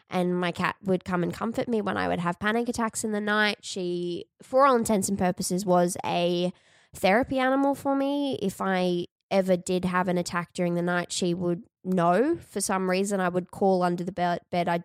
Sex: female